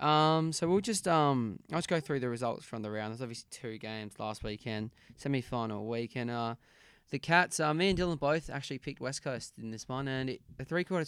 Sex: male